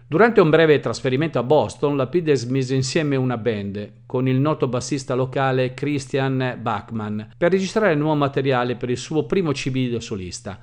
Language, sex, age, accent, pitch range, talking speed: Italian, male, 50-69, native, 120-150 Hz, 170 wpm